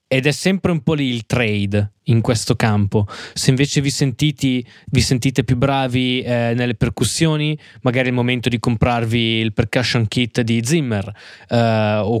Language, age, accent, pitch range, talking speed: Italian, 20-39, native, 115-135 Hz, 170 wpm